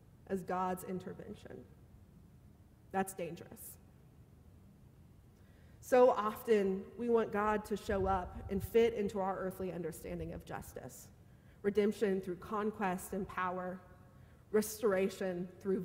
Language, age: English, 40-59